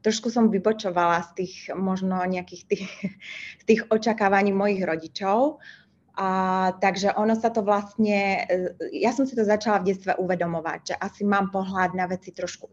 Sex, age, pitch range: female, 20-39, 190-215 Hz